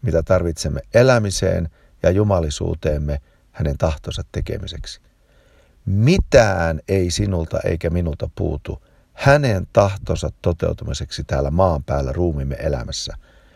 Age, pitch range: 50-69, 75-105 Hz